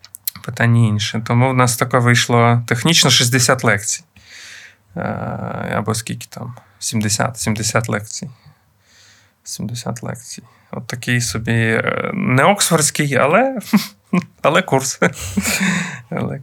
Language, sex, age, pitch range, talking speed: Ukrainian, male, 20-39, 105-125 Hz, 100 wpm